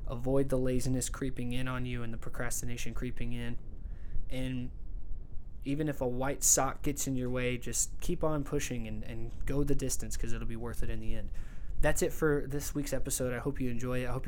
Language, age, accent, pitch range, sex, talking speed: English, 20-39, American, 115-135 Hz, male, 220 wpm